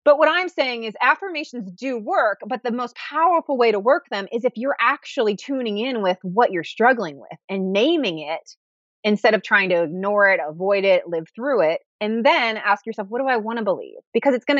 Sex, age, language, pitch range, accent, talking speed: female, 30-49, English, 195-290 Hz, American, 220 wpm